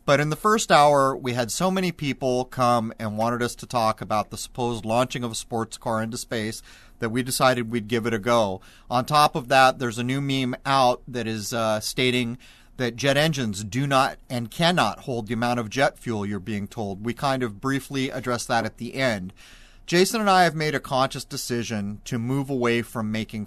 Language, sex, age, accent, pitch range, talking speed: English, male, 30-49, American, 115-135 Hz, 215 wpm